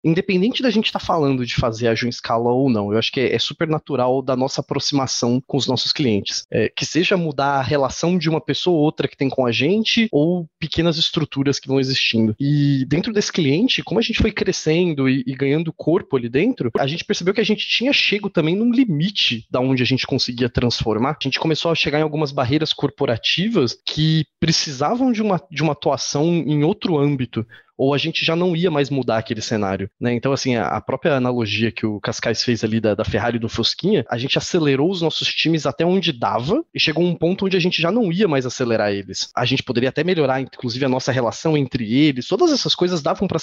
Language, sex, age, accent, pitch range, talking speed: Portuguese, male, 20-39, Brazilian, 130-170 Hz, 220 wpm